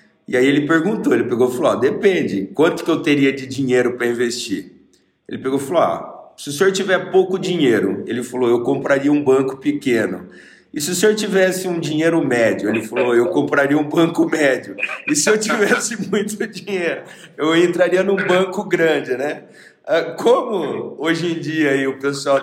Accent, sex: Brazilian, male